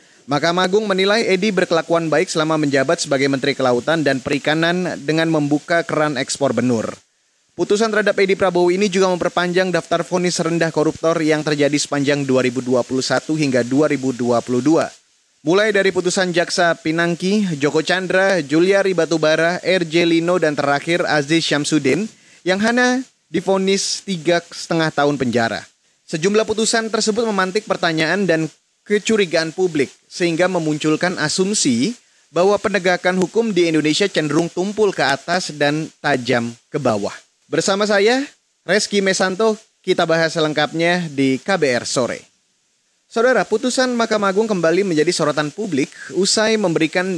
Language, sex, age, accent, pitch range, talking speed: Indonesian, male, 20-39, native, 150-195 Hz, 130 wpm